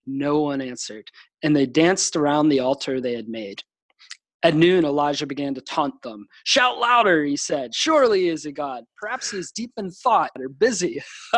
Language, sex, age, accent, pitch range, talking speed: English, male, 30-49, American, 140-175 Hz, 190 wpm